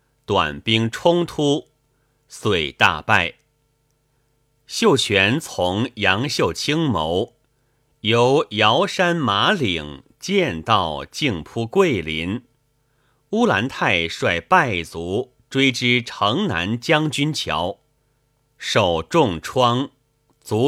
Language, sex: Chinese, male